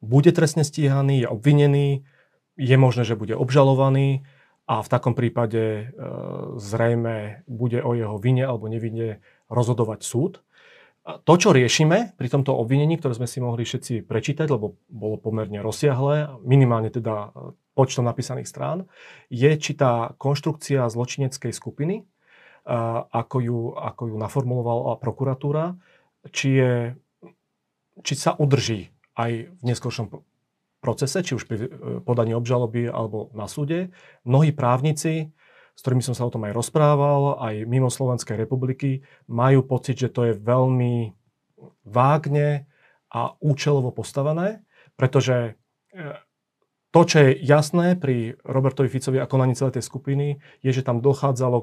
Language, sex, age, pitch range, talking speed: Slovak, male, 30-49, 120-145 Hz, 130 wpm